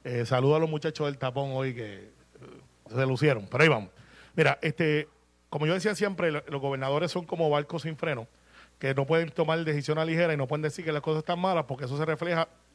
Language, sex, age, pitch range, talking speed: Spanish, male, 30-49, 145-180 Hz, 225 wpm